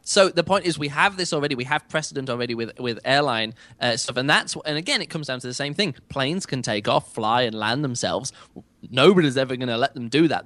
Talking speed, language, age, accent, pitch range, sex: 260 wpm, English, 20-39, British, 120-150 Hz, male